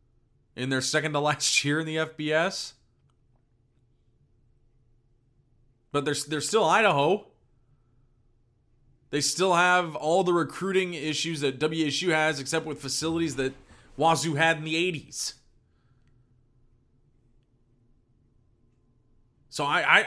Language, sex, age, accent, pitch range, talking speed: English, male, 30-49, American, 120-150 Hz, 105 wpm